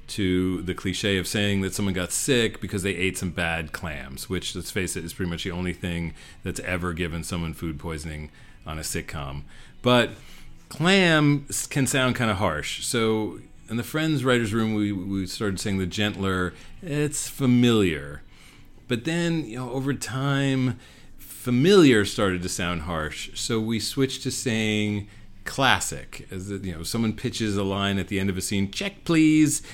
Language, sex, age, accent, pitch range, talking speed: English, male, 40-59, American, 90-125 Hz, 180 wpm